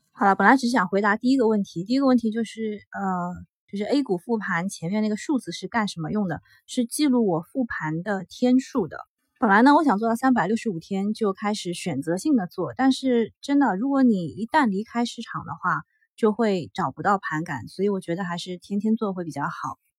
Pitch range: 185-240 Hz